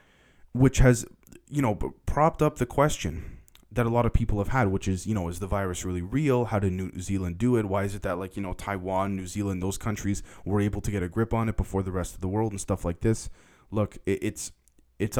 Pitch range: 95-115 Hz